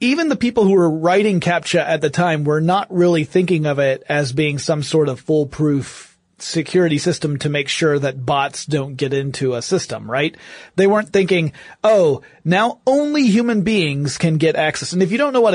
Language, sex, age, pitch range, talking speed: English, male, 30-49, 150-185 Hz, 200 wpm